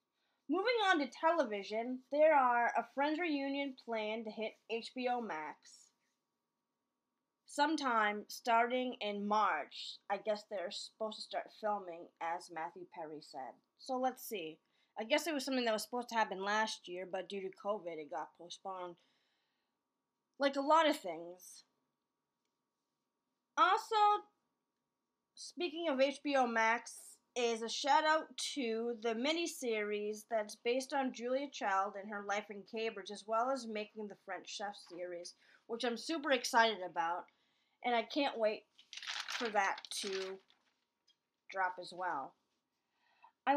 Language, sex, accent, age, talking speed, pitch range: English, female, American, 20-39, 140 wpm, 205-280 Hz